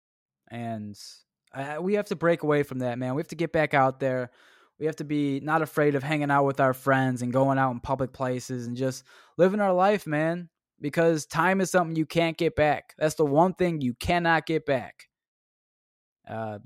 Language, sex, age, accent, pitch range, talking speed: English, male, 20-39, American, 130-165 Hz, 205 wpm